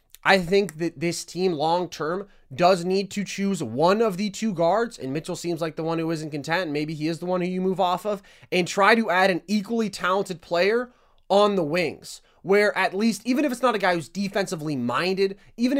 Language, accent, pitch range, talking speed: English, American, 155-210 Hz, 220 wpm